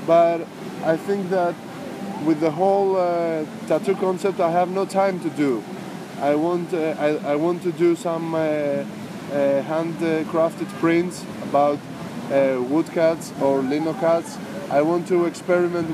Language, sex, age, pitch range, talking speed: English, male, 20-39, 145-170 Hz, 145 wpm